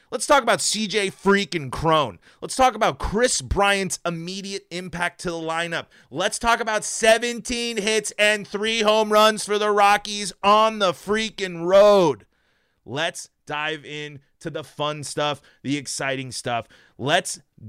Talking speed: 145 wpm